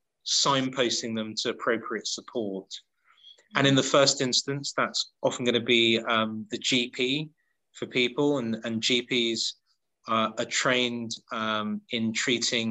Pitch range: 110-130 Hz